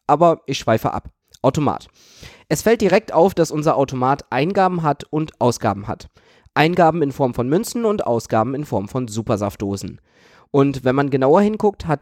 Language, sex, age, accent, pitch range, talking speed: German, male, 20-39, German, 115-160 Hz, 170 wpm